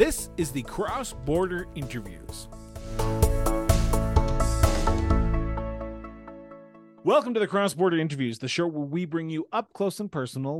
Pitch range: 135-180 Hz